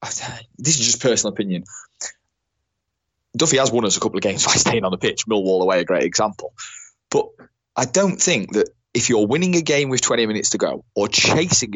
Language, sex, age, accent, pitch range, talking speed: English, male, 20-39, British, 95-120 Hz, 205 wpm